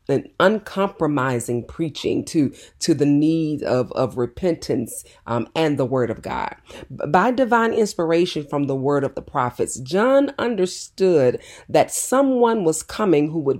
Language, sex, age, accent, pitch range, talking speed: English, female, 40-59, American, 150-225 Hz, 145 wpm